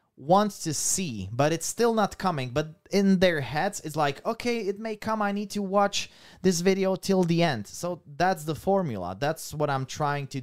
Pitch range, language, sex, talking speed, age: 140-190 Hz, Slovak, male, 205 wpm, 30-49